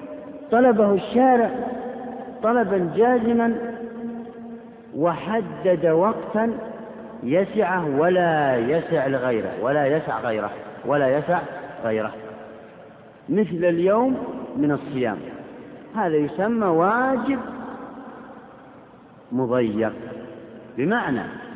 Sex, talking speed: male, 70 wpm